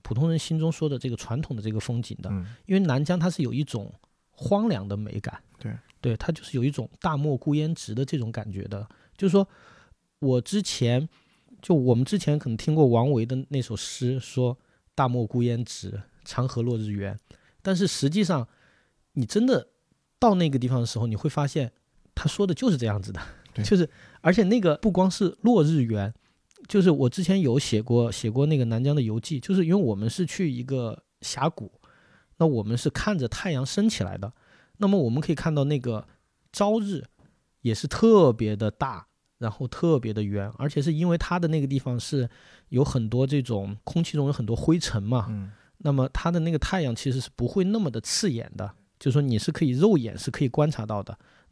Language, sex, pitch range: Chinese, male, 115-165 Hz